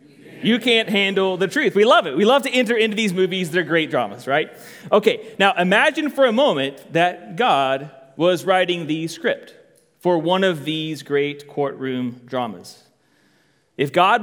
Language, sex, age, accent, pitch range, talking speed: English, male, 30-49, American, 165-235 Hz, 175 wpm